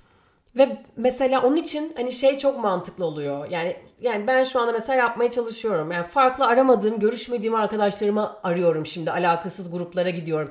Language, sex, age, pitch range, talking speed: Turkish, female, 30-49, 180-245 Hz, 155 wpm